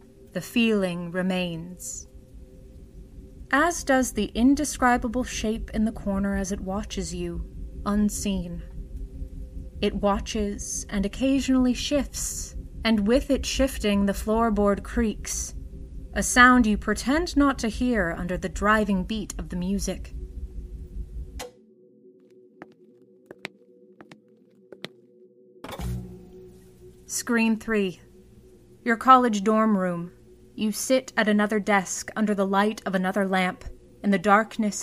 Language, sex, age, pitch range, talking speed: English, female, 30-49, 170-230 Hz, 105 wpm